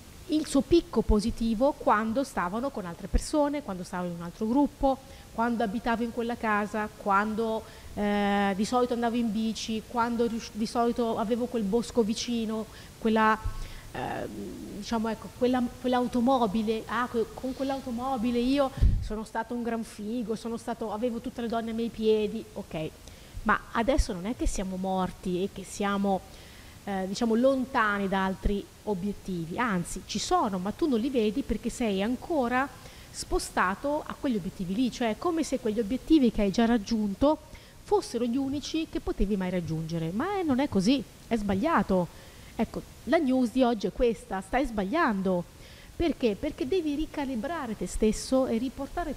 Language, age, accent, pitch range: Italian, 30-49, native, 205-260 Hz